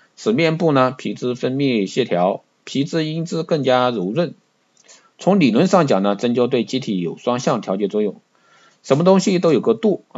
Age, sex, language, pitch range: 50-69, male, Chinese, 110-155 Hz